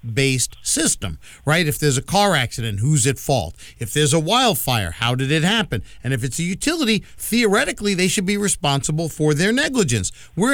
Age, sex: 50-69, male